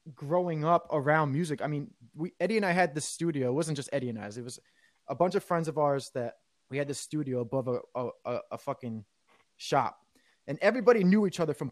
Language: English